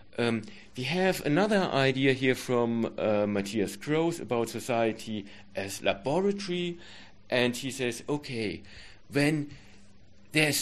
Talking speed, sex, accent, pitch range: 115 wpm, male, German, 105-140 Hz